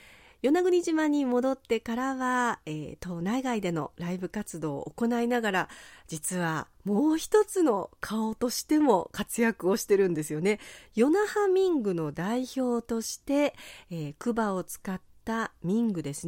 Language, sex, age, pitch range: Japanese, female, 40-59, 170-245 Hz